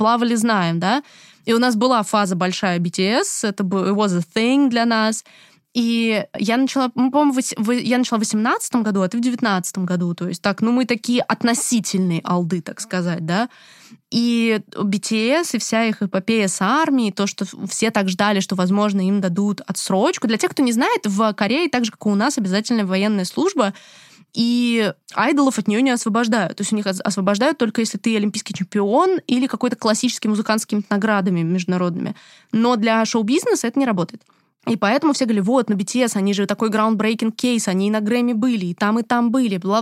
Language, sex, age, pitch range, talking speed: Russian, female, 20-39, 200-240 Hz, 195 wpm